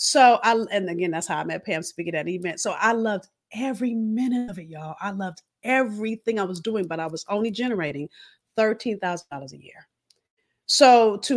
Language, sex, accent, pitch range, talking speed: English, female, American, 185-250 Hz, 195 wpm